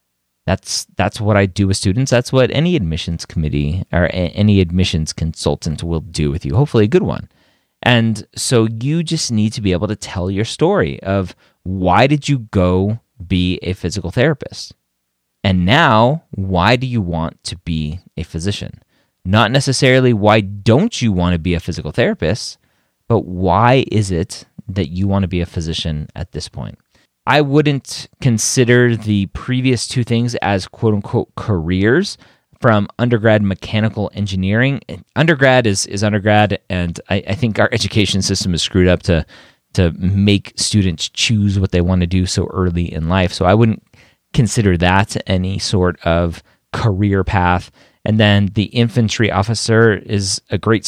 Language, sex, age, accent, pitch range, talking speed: English, male, 30-49, American, 90-115 Hz, 165 wpm